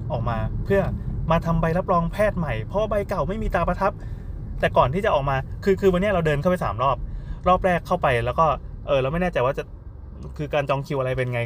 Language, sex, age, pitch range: Thai, male, 20-39, 125-165 Hz